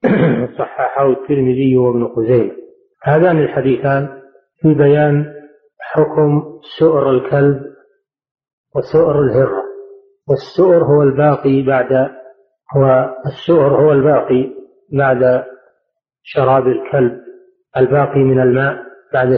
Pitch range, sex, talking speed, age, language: 130-165 Hz, male, 85 wpm, 40-59, Arabic